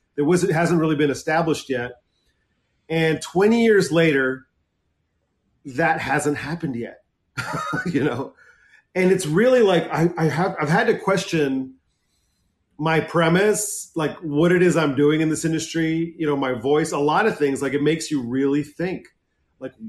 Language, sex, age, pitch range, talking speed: English, male, 40-59, 130-165 Hz, 165 wpm